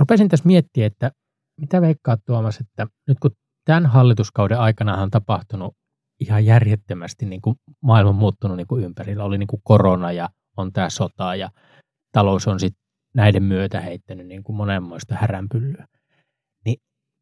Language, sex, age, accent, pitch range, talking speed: Finnish, male, 20-39, native, 100-130 Hz, 150 wpm